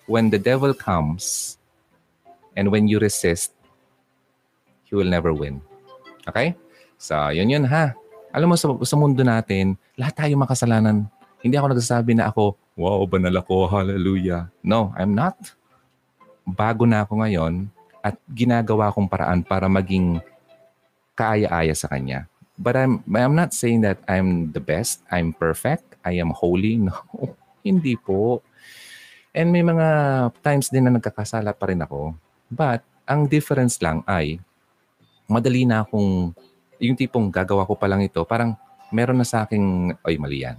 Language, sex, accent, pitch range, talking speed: Filipino, male, native, 95-135 Hz, 150 wpm